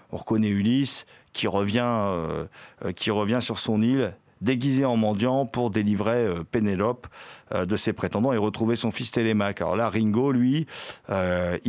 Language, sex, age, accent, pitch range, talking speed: French, male, 40-59, French, 100-130 Hz, 170 wpm